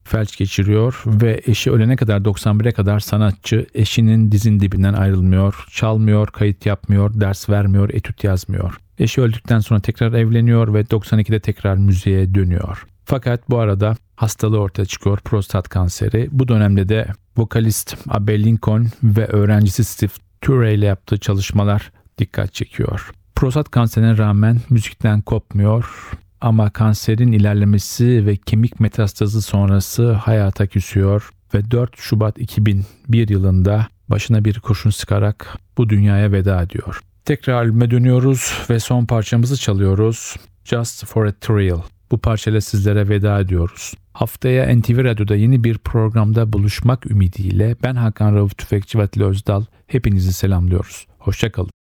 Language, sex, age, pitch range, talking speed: Turkish, male, 50-69, 100-115 Hz, 130 wpm